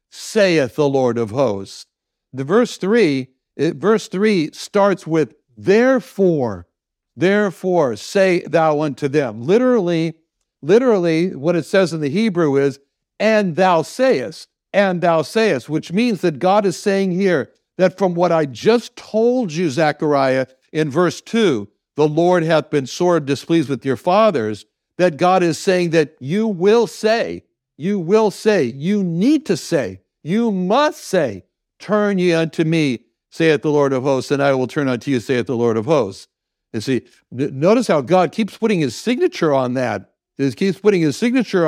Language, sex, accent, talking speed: English, male, American, 165 wpm